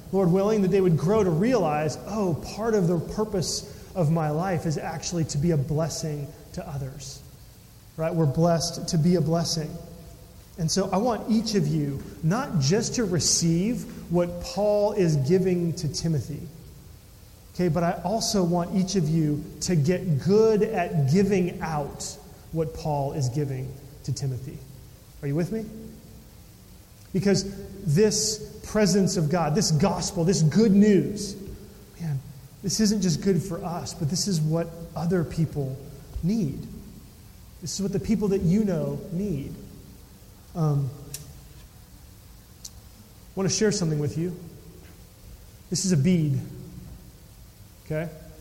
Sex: male